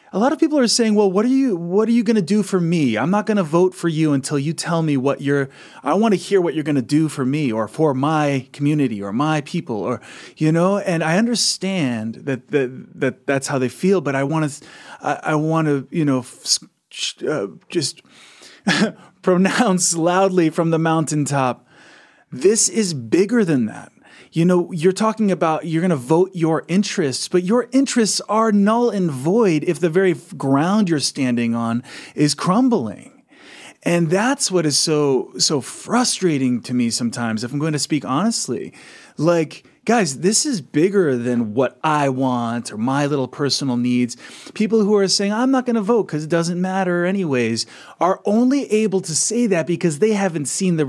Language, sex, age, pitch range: English, male, 30-49, 145-200 Hz